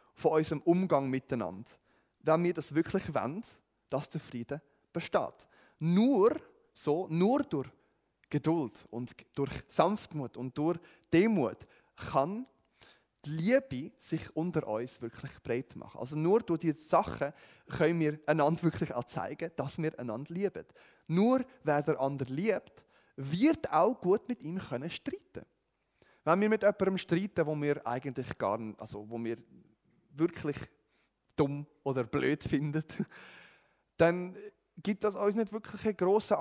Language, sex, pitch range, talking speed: German, male, 135-185 Hz, 140 wpm